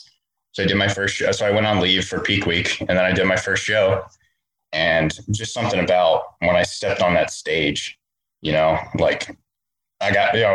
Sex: male